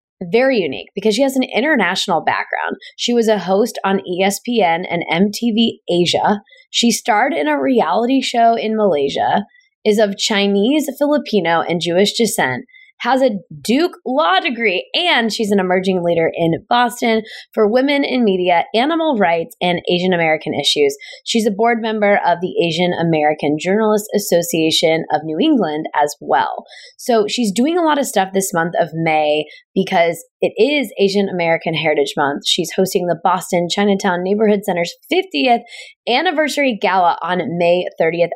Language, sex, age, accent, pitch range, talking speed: English, female, 20-39, American, 175-245 Hz, 155 wpm